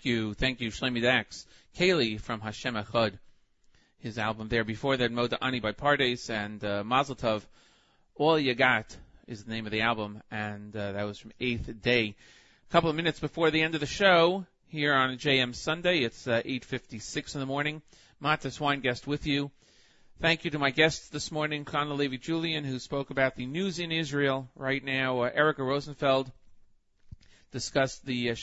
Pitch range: 115-140 Hz